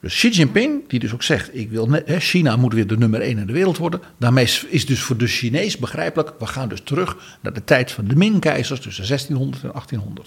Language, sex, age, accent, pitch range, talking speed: Dutch, male, 50-69, Dutch, 115-170 Hz, 220 wpm